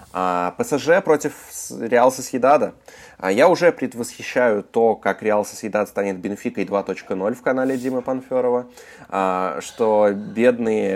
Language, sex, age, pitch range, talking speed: Russian, male, 20-39, 95-115 Hz, 110 wpm